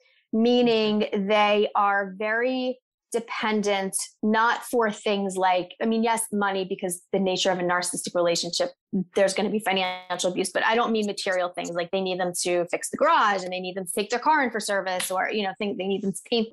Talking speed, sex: 220 wpm, female